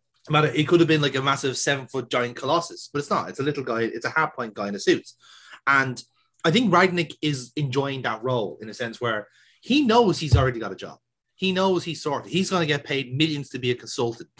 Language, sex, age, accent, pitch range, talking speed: English, male, 30-49, Irish, 140-230 Hz, 240 wpm